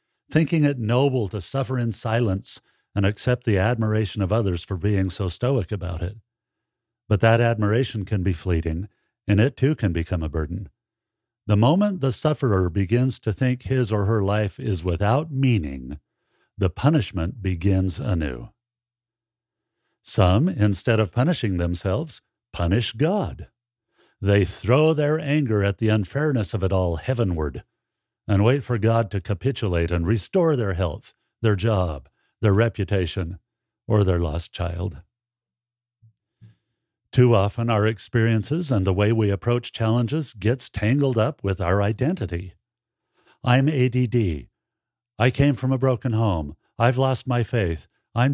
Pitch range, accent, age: 100-125 Hz, American, 50-69